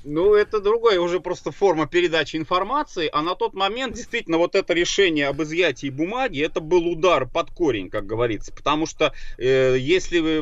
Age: 30-49